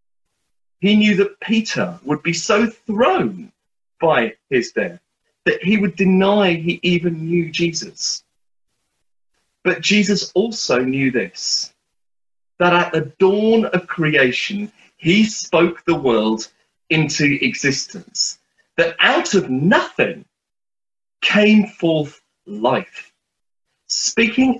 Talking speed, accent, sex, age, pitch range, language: 105 wpm, British, male, 40-59, 155-210 Hz, English